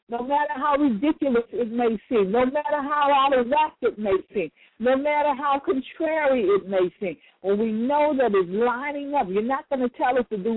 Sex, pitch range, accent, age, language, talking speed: female, 195-285 Hz, American, 60-79, English, 215 wpm